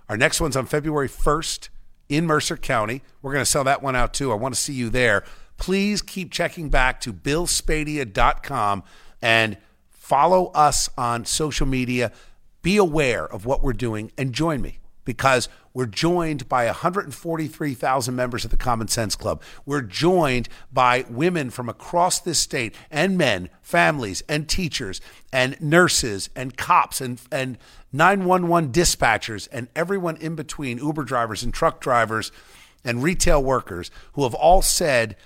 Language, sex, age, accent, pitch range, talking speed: English, male, 50-69, American, 110-150 Hz, 155 wpm